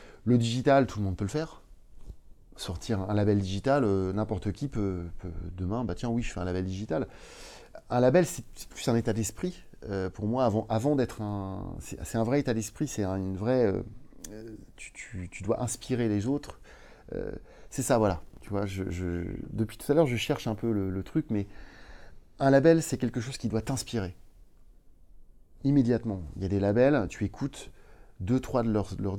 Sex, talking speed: male, 200 wpm